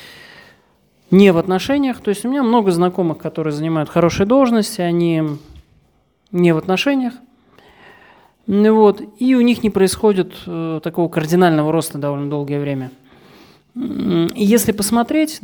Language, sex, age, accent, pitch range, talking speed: Russian, male, 30-49, native, 155-200 Hz, 125 wpm